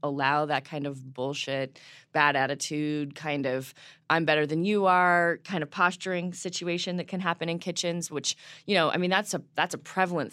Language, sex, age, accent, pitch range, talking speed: English, female, 20-39, American, 145-185 Hz, 190 wpm